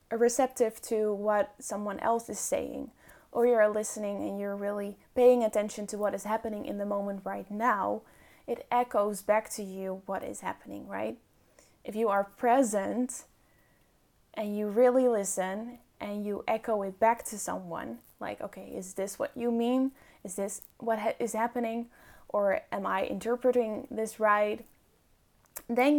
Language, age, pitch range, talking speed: English, 10-29, 205-240 Hz, 155 wpm